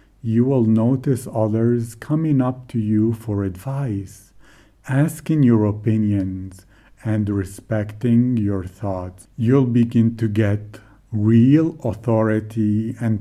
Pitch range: 105-120 Hz